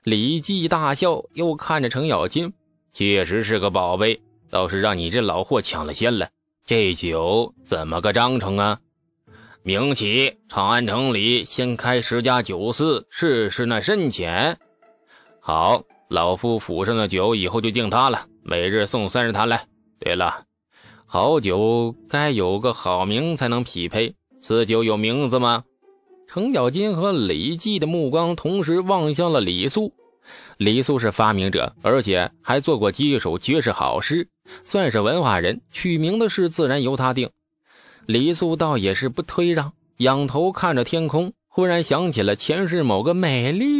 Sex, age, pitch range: male, 20-39, 110-170 Hz